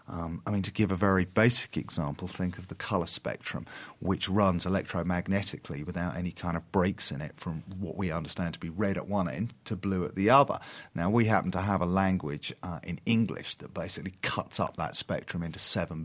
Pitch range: 90-110 Hz